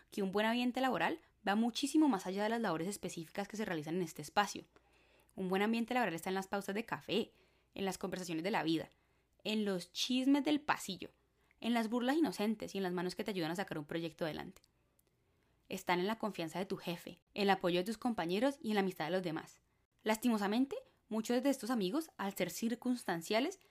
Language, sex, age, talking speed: Spanish, female, 20-39, 215 wpm